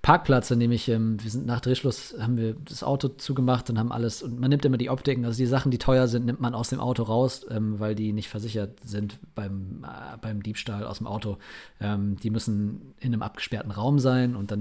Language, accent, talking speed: German, German, 225 wpm